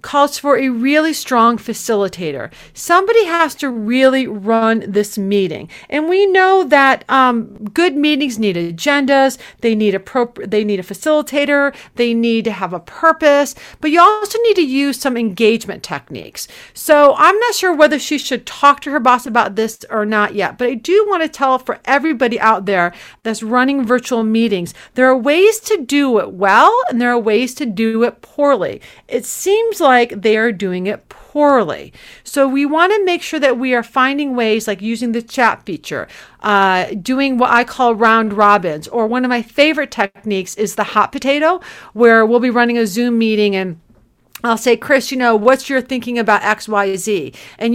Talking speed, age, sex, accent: 185 wpm, 40-59, female, American